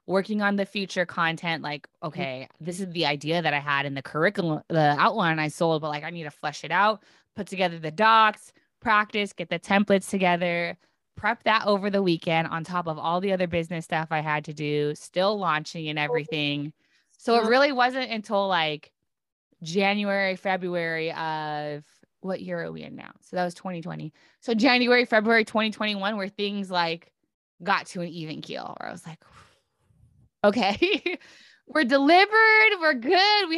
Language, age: English, 20-39